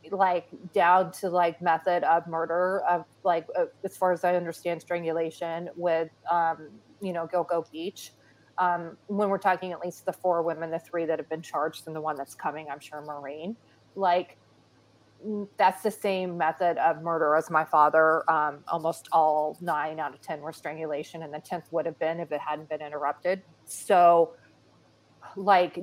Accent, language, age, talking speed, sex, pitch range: American, English, 30-49, 175 wpm, female, 155-175 Hz